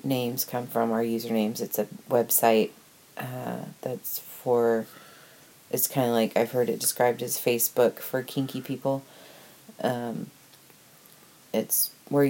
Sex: female